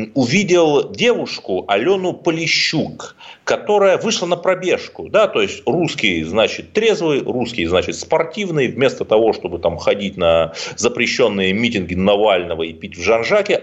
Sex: male